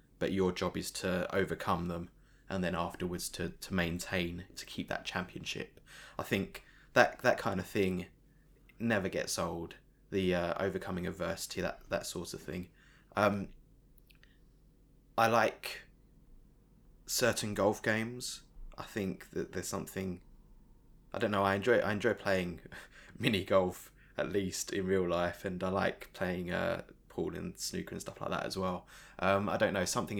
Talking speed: 160 wpm